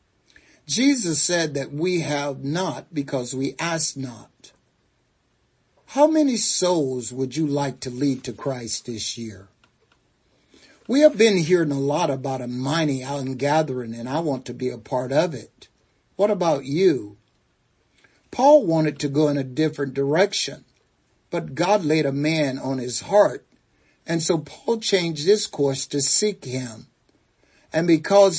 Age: 60-79